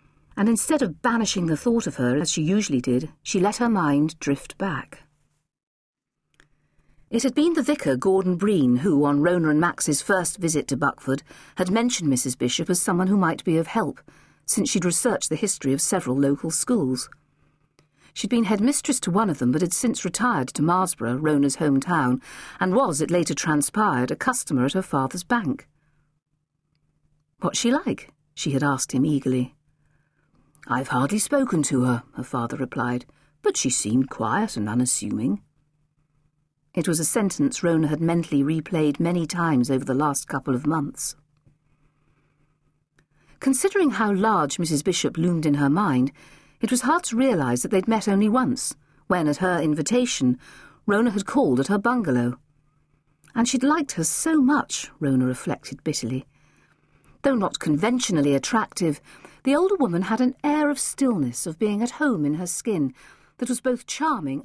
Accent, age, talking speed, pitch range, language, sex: British, 50-69, 165 wpm, 145-220 Hz, English, female